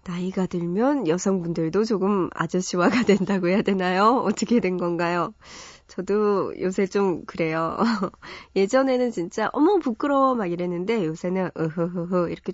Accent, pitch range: native, 180-240 Hz